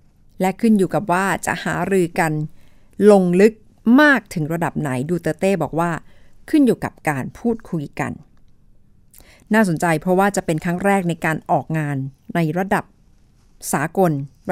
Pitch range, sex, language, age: 155-205 Hz, female, Thai, 60-79